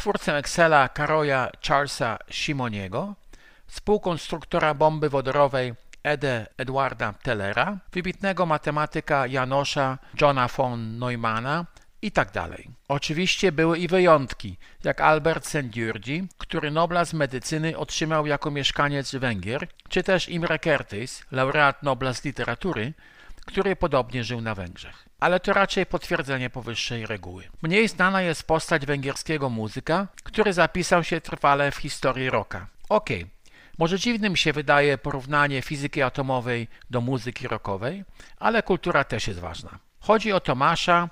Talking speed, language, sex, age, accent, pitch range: 125 wpm, Polish, male, 50-69, native, 130-165 Hz